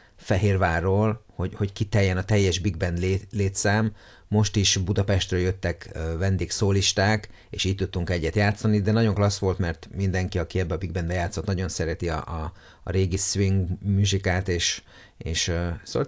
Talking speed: 155 wpm